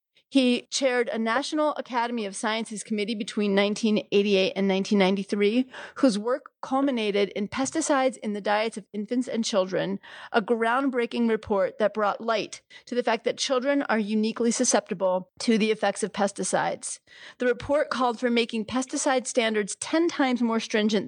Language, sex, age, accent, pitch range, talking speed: English, female, 30-49, American, 200-245 Hz, 155 wpm